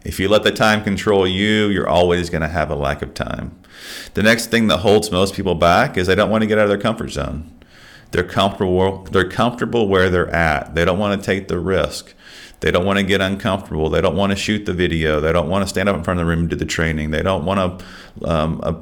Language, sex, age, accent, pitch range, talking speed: English, male, 40-59, American, 85-100 Hz, 260 wpm